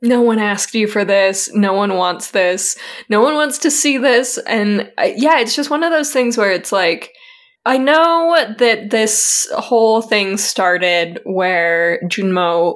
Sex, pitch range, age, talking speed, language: female, 185-255 Hz, 10-29, 175 wpm, English